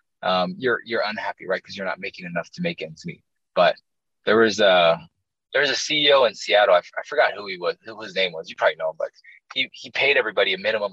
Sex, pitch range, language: male, 90-135 Hz, English